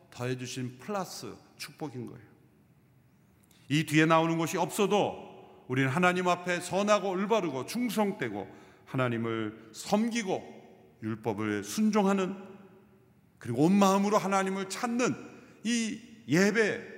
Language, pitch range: Korean, 125-190 Hz